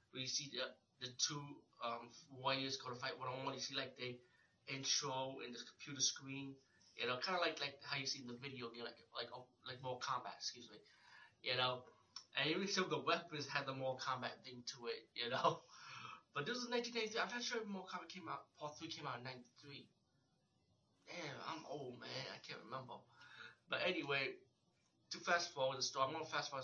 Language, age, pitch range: English, 20-39, 125-140 Hz